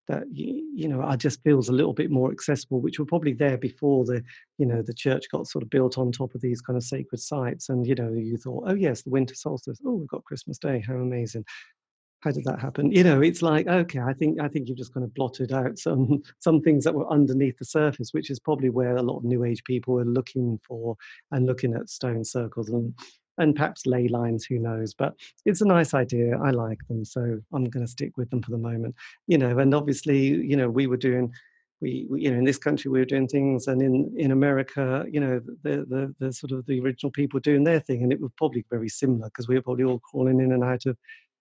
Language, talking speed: English, 250 wpm